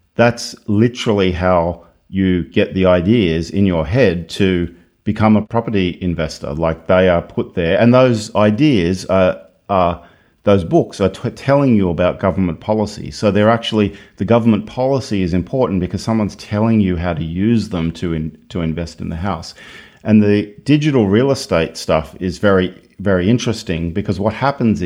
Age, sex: 40-59, male